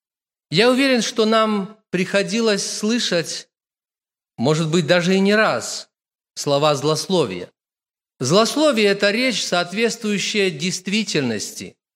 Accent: native